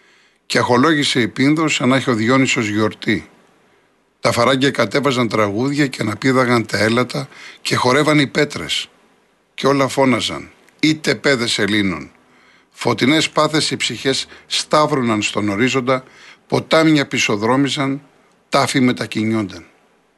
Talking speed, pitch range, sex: 115 wpm, 110-140 Hz, male